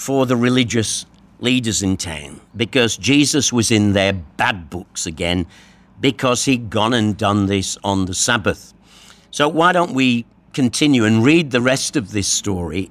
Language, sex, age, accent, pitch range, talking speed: English, male, 60-79, British, 100-135 Hz, 165 wpm